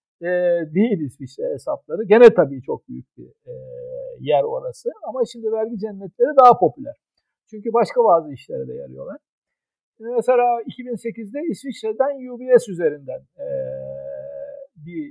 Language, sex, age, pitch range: Turkish, male, 60-79, 185-265 Hz